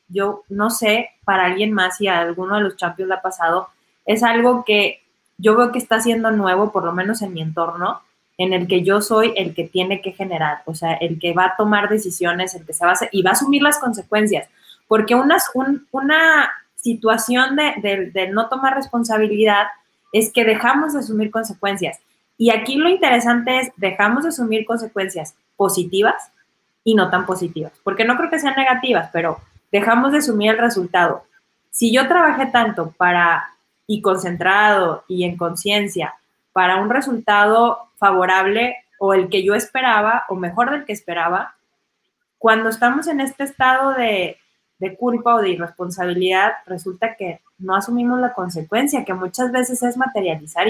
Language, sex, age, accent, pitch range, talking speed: Spanish, female, 20-39, Mexican, 185-245 Hz, 175 wpm